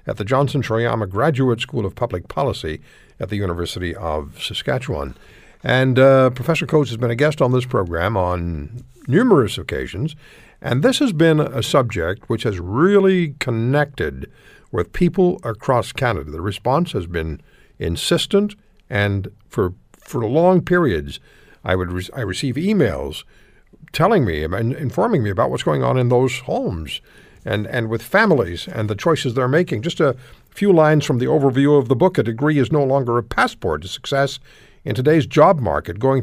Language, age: English, 60-79